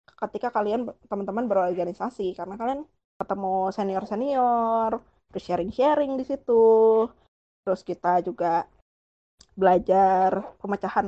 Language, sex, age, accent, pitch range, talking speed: Indonesian, female, 20-39, native, 190-235 Hz, 90 wpm